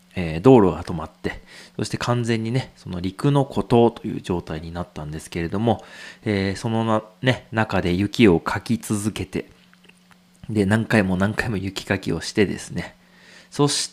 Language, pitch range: Japanese, 95-145 Hz